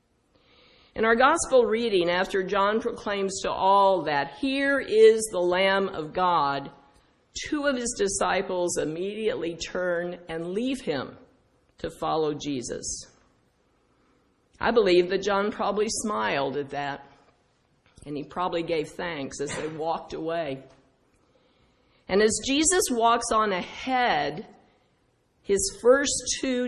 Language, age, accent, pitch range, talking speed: English, 50-69, American, 155-215 Hz, 120 wpm